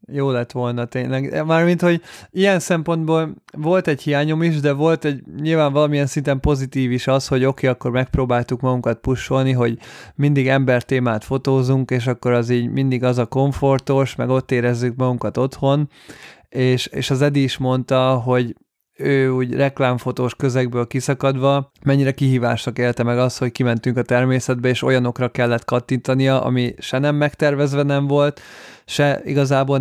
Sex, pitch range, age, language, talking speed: male, 125-145 Hz, 20-39, Hungarian, 155 wpm